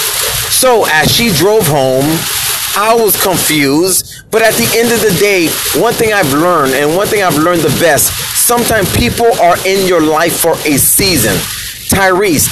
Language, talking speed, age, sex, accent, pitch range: English, 175 wpm, 30-49, male, American, 170-210 Hz